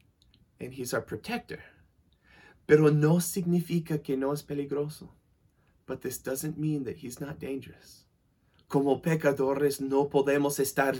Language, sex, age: English, male, 20-39